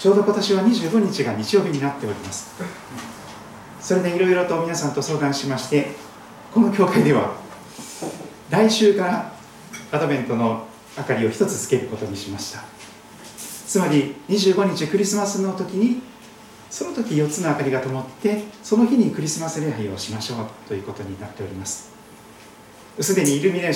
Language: Japanese